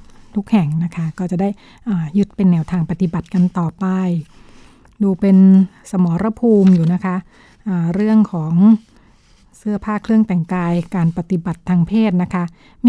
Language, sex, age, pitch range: Thai, female, 60-79, 180-215 Hz